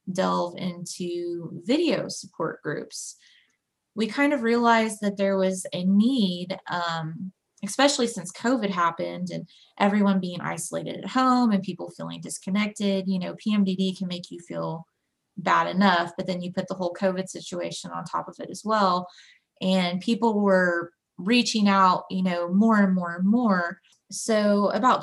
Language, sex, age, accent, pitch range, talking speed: English, female, 20-39, American, 175-200 Hz, 160 wpm